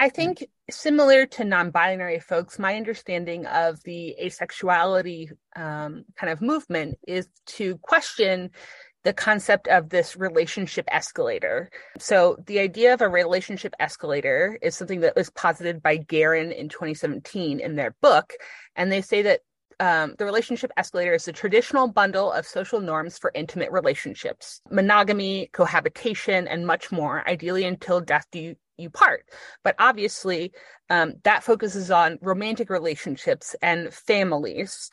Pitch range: 170-235 Hz